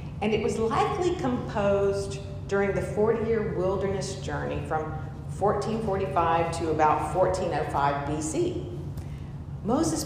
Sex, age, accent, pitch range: female, 50-69, American, 150-200 Hz